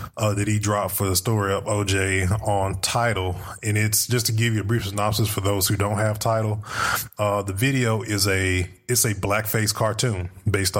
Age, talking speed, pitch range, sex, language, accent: 20-39, 200 wpm, 95-115 Hz, male, English, American